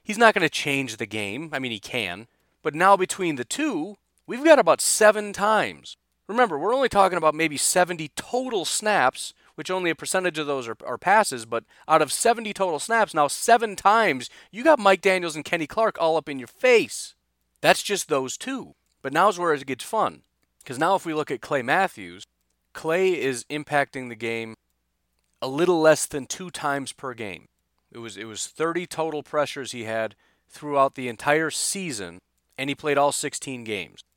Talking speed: 195 wpm